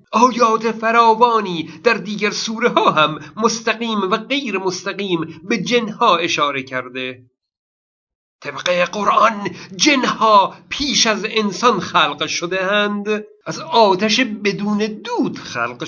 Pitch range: 160-225 Hz